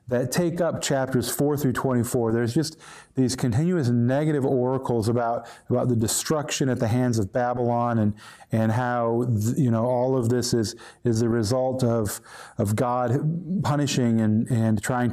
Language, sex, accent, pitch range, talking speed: English, male, American, 120-155 Hz, 165 wpm